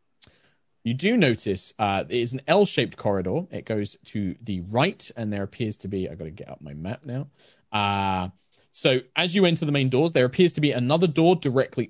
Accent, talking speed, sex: British, 210 wpm, male